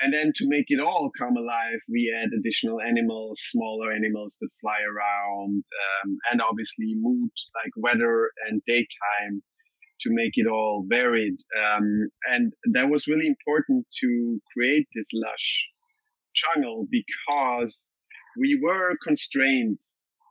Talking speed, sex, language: 135 wpm, male, English